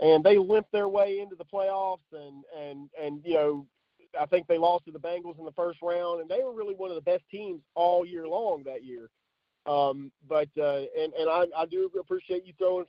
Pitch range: 150-195 Hz